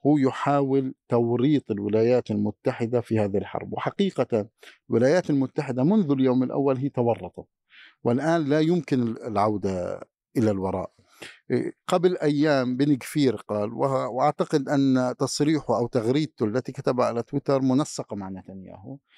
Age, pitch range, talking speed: 50-69, 115-150 Hz, 120 wpm